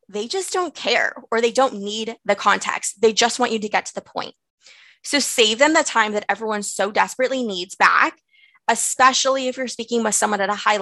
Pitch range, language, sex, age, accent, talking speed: 200-255 Hz, English, female, 20-39, American, 215 wpm